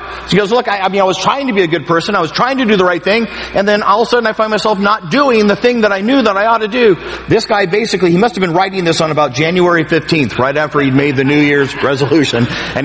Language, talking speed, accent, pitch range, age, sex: English, 310 wpm, American, 135-200 Hz, 50-69, male